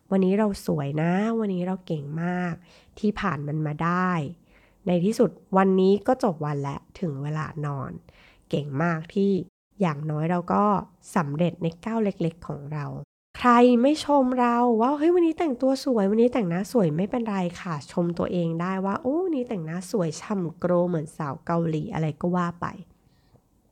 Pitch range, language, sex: 165-215 Hz, Thai, female